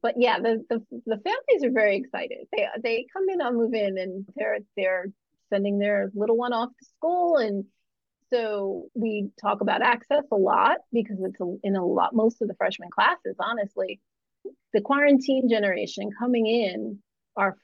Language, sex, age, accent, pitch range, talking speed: English, female, 30-49, American, 200-245 Hz, 175 wpm